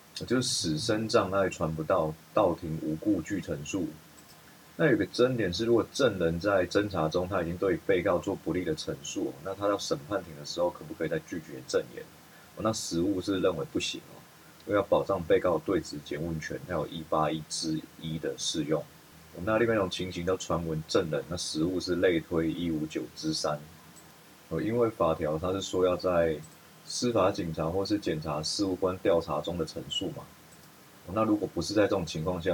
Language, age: Chinese, 30-49